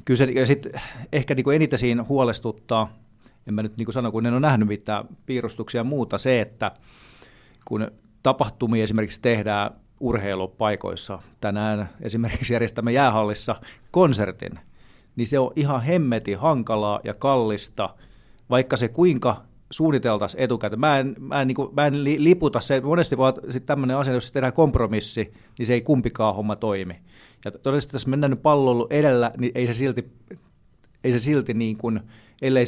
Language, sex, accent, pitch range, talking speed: Finnish, male, native, 105-130 Hz, 155 wpm